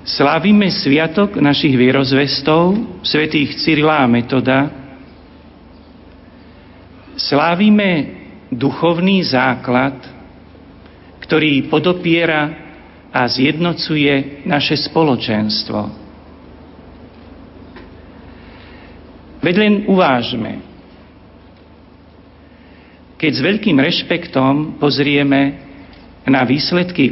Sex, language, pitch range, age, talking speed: male, Slovak, 125-150 Hz, 50-69, 55 wpm